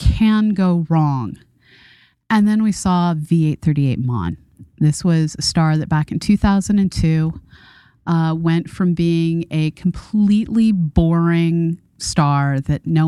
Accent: American